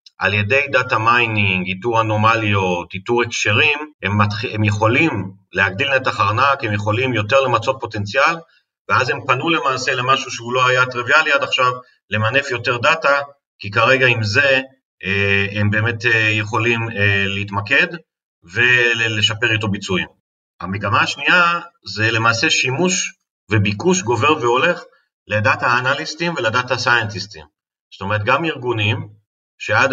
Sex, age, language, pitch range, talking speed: male, 40-59, Hebrew, 105-140 Hz, 125 wpm